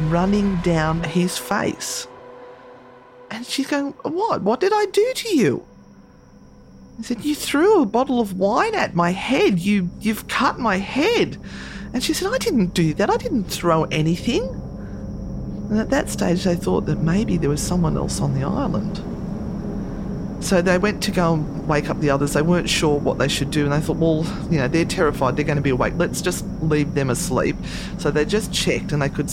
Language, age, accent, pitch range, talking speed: English, 40-59, Australian, 135-190 Hz, 200 wpm